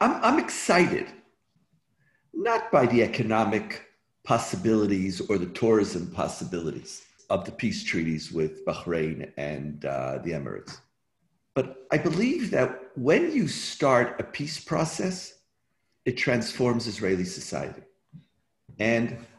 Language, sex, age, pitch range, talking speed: English, male, 50-69, 110-170 Hz, 110 wpm